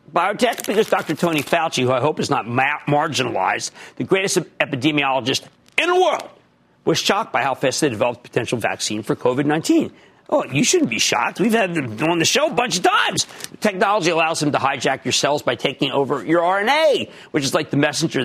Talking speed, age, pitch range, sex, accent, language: 195 wpm, 50-69, 135-195 Hz, male, American, English